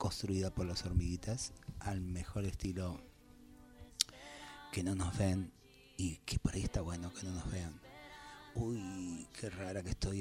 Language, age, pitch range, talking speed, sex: Spanish, 30-49, 95-110 Hz, 155 wpm, male